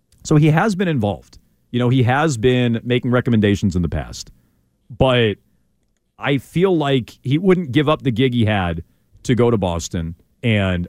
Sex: male